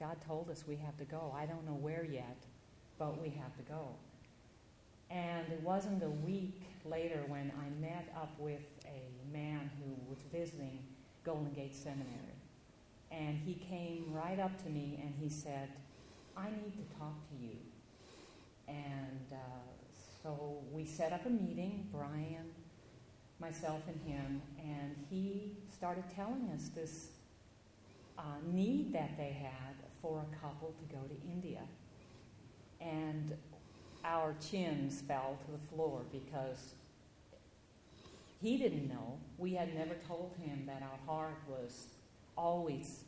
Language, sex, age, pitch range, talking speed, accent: English, female, 50-69, 135-170 Hz, 145 wpm, American